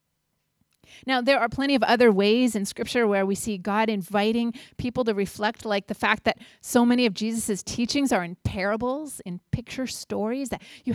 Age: 30-49